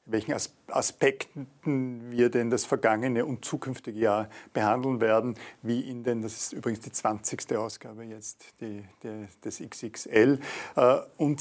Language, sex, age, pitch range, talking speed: German, male, 50-69, 110-130 Hz, 135 wpm